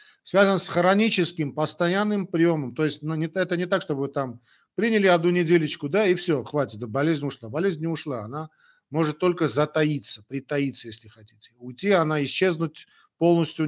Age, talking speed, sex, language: 50-69, 160 wpm, male, Russian